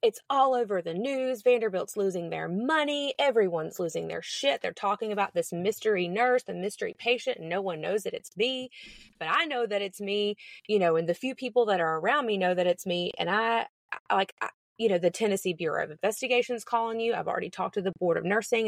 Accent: American